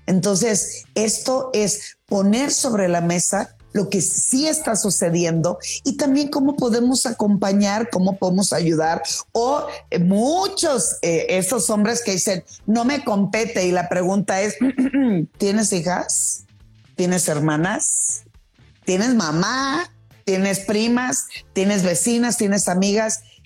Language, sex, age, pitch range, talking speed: Spanish, female, 40-59, 175-220 Hz, 120 wpm